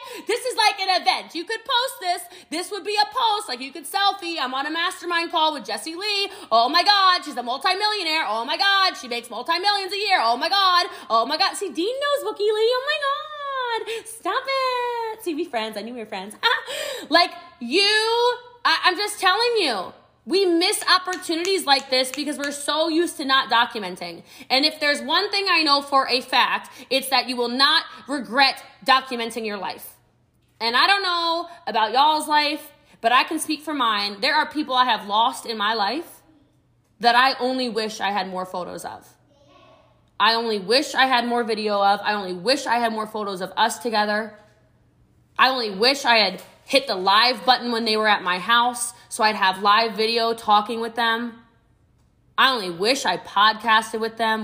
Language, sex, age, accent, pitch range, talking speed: English, female, 20-39, American, 225-360 Hz, 200 wpm